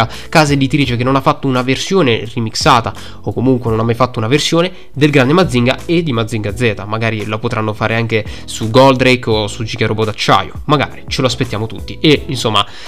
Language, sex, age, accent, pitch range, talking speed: Italian, male, 20-39, native, 110-140 Hz, 200 wpm